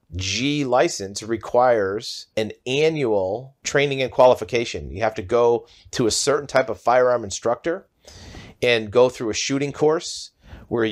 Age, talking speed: 40-59, 145 wpm